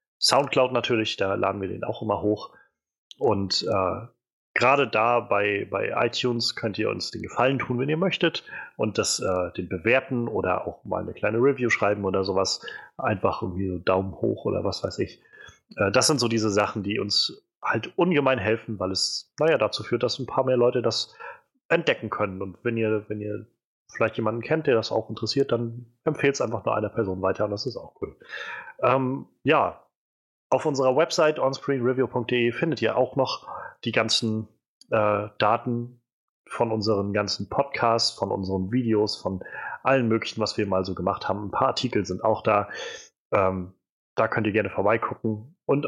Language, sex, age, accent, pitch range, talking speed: German, male, 30-49, German, 100-125 Hz, 185 wpm